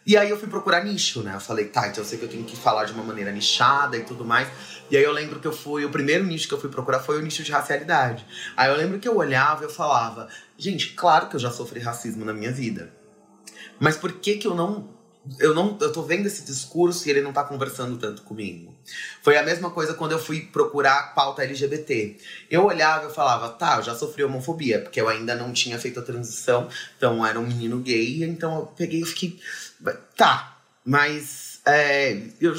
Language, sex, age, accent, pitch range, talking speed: Portuguese, male, 20-39, Brazilian, 120-165 Hz, 225 wpm